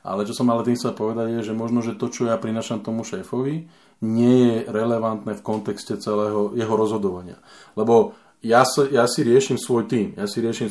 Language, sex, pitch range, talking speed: Slovak, male, 105-125 Hz, 195 wpm